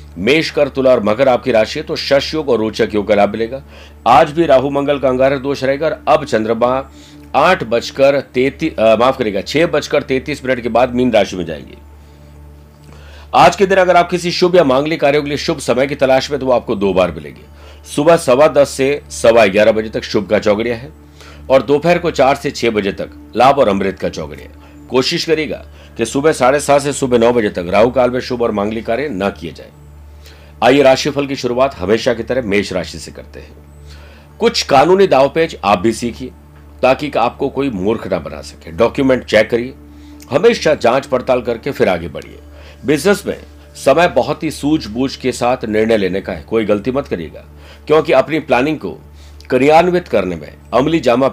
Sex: male